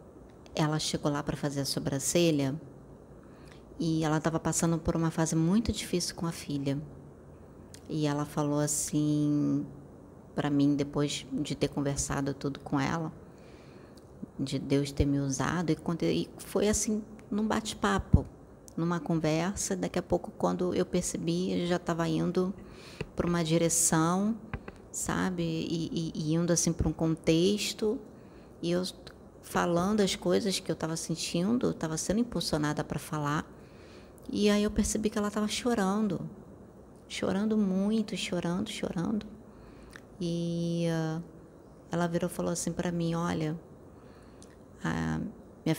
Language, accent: Portuguese, Brazilian